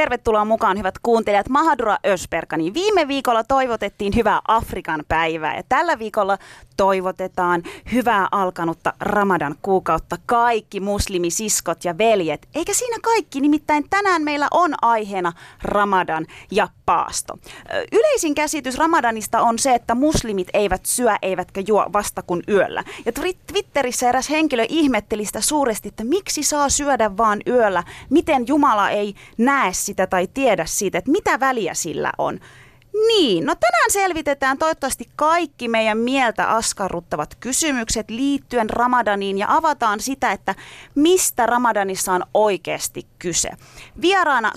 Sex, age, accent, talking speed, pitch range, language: female, 30-49, native, 130 wpm, 195-290 Hz, Finnish